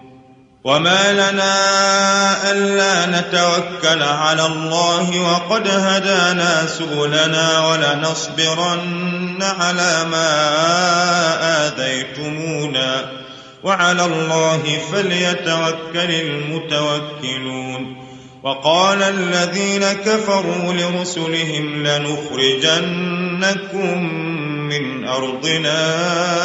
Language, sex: Arabic, male